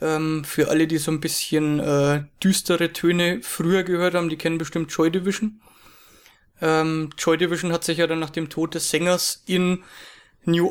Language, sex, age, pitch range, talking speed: English, male, 20-39, 160-185 Hz, 175 wpm